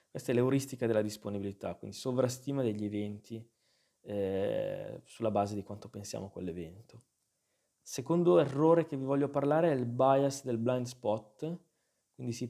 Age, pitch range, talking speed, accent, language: 20-39, 105-130 Hz, 150 wpm, native, Italian